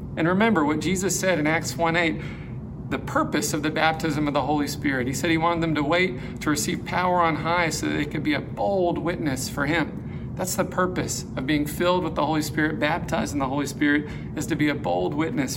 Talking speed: 230 wpm